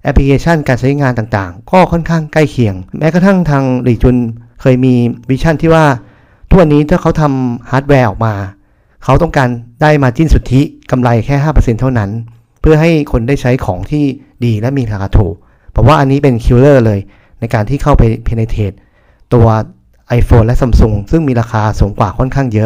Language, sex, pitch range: Thai, male, 115-145 Hz